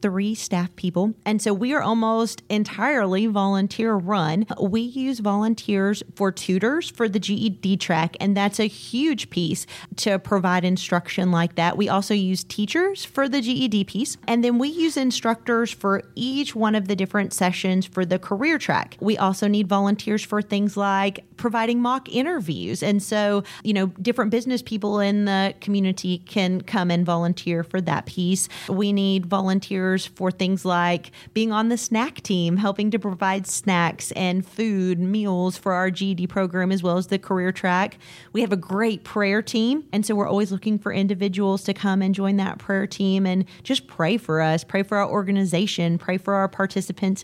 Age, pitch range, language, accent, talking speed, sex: 30-49, 185-215 Hz, English, American, 180 wpm, female